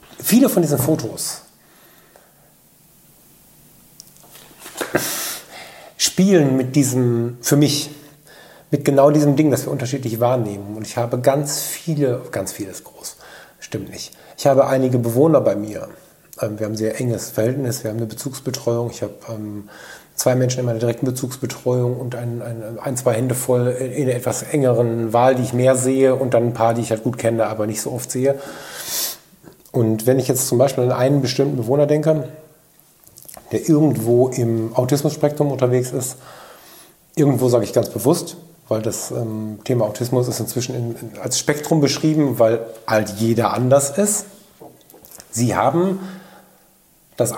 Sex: male